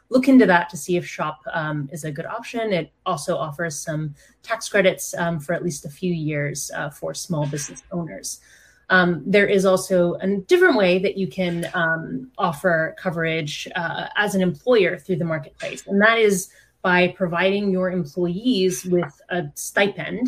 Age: 30-49